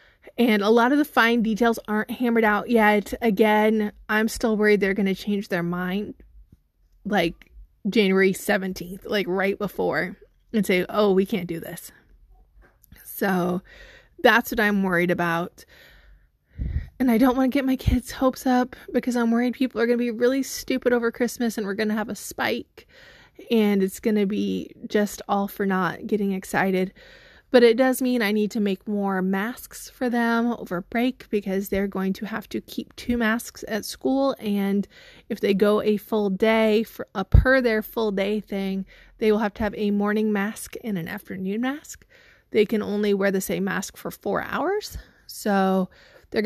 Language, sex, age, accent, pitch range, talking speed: English, female, 20-39, American, 195-235 Hz, 185 wpm